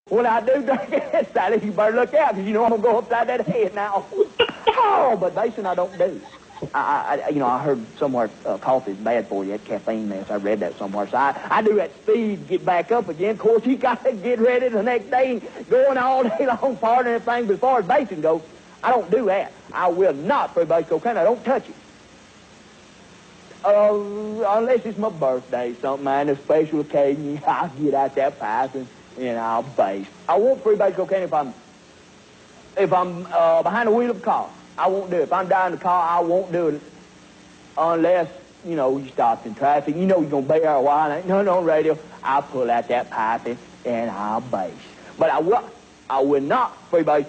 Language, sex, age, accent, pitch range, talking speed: English, male, 50-69, American, 140-230 Hz, 220 wpm